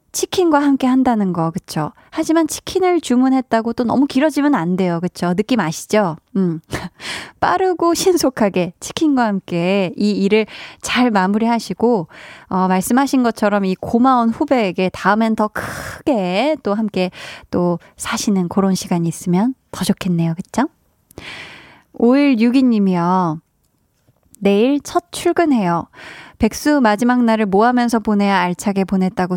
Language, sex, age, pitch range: Korean, female, 20-39, 190-255 Hz